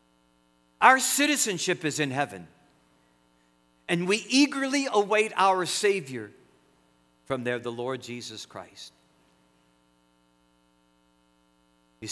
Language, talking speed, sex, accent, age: English, 90 wpm, male, American, 50-69